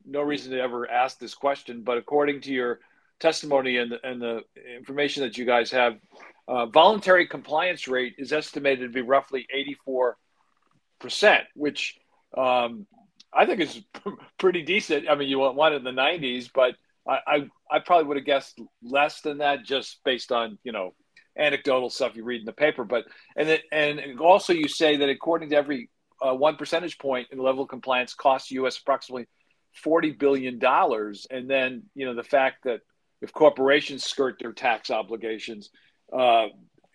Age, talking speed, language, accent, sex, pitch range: 50-69, 175 wpm, English, American, male, 130-155 Hz